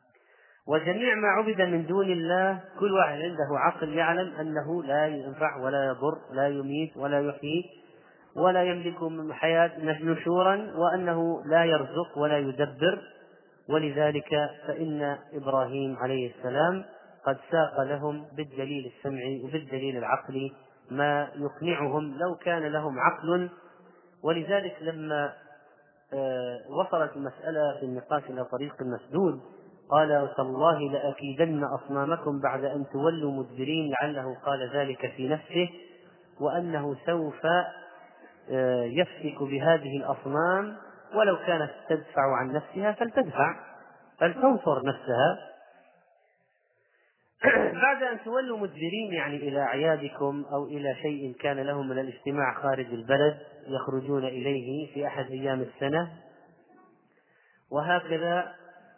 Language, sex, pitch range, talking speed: Arabic, male, 140-170 Hz, 110 wpm